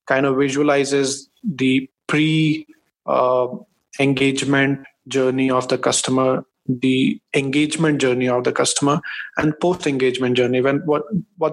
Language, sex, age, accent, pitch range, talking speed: English, male, 20-39, Indian, 135-155 Hz, 110 wpm